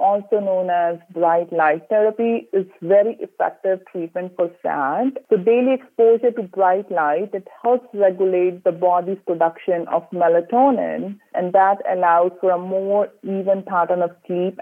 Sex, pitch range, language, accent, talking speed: female, 175-230 Hz, English, Indian, 150 wpm